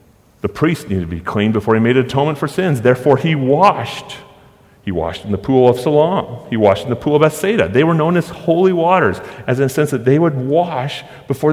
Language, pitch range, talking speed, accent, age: English, 110-160 Hz, 230 wpm, American, 40-59